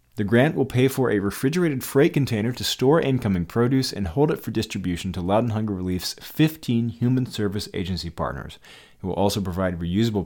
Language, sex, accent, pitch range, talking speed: English, male, American, 90-125 Hz, 185 wpm